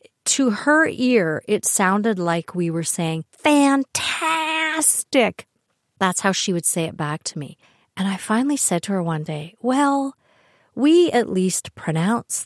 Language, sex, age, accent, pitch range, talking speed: English, female, 50-69, American, 160-235 Hz, 155 wpm